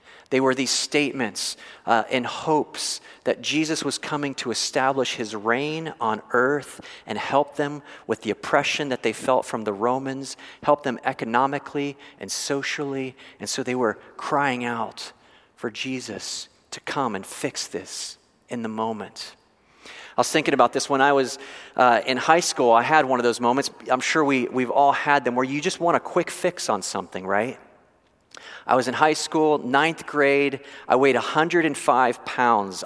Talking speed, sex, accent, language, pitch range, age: 175 wpm, male, American, English, 120-145 Hz, 40-59